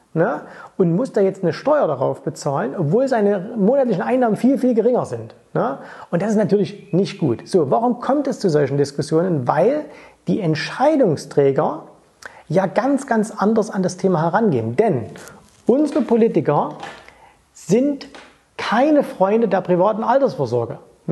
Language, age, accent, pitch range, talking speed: German, 30-49, German, 165-230 Hz, 140 wpm